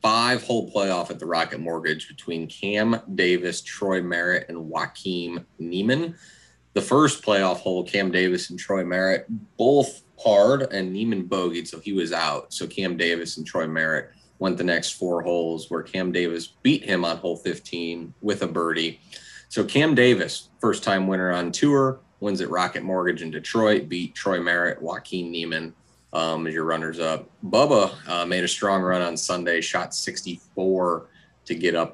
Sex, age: male, 30-49